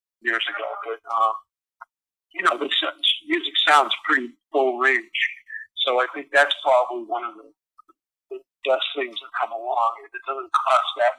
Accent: American